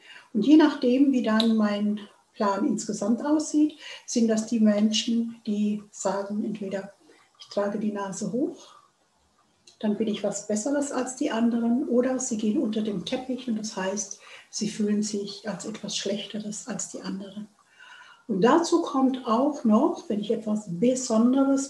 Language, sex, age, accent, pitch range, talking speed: German, female, 60-79, German, 215-260 Hz, 155 wpm